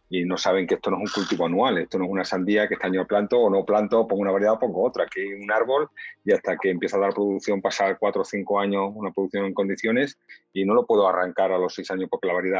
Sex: male